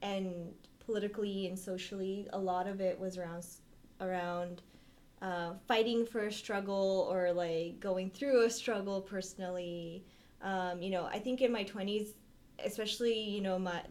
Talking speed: 150 wpm